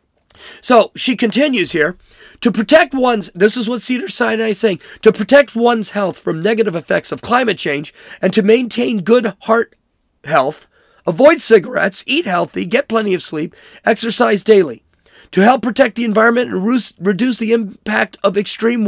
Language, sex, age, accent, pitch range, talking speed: English, male, 40-59, American, 205-245 Hz, 160 wpm